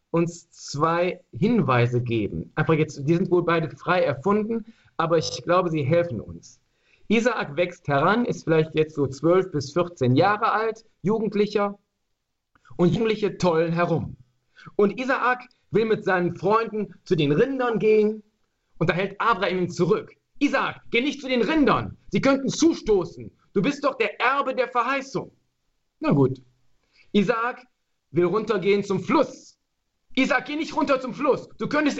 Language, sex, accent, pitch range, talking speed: German, male, German, 155-235 Hz, 150 wpm